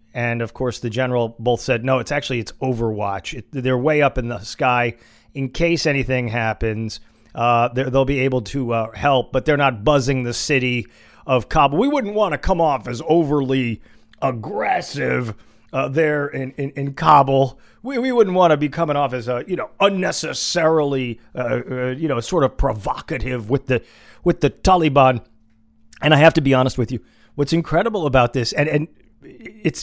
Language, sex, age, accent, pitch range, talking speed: English, male, 40-59, American, 120-150 Hz, 185 wpm